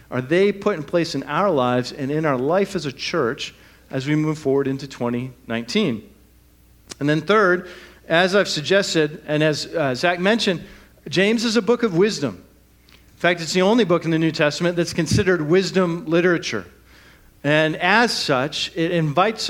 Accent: American